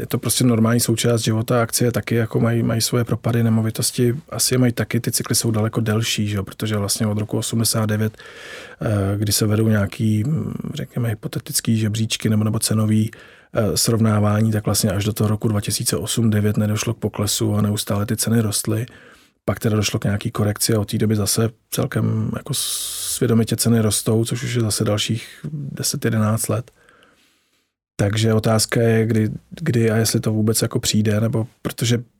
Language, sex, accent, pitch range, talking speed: Czech, male, native, 110-120 Hz, 165 wpm